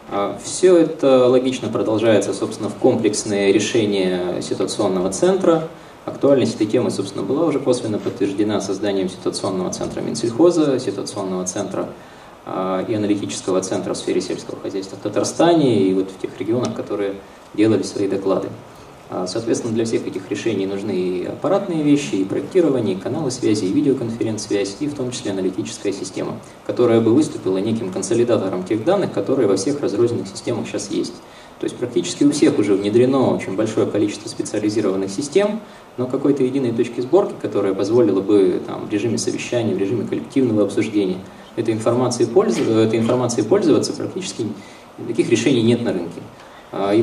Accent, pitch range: native, 100-145 Hz